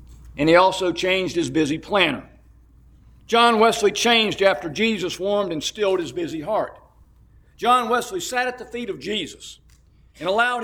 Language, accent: English, American